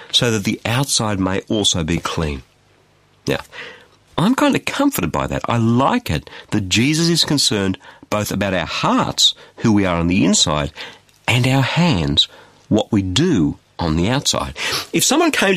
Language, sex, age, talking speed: English, male, 50-69, 170 wpm